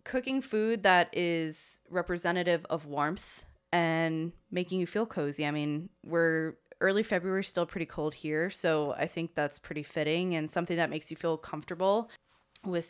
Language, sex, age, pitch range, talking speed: English, female, 20-39, 160-185 Hz, 165 wpm